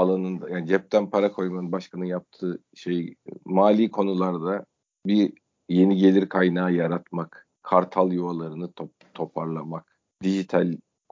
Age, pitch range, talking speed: 40-59, 95-130 Hz, 110 wpm